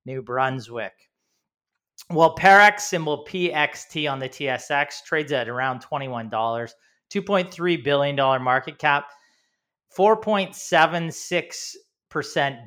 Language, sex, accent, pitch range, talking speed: English, male, American, 130-160 Hz, 85 wpm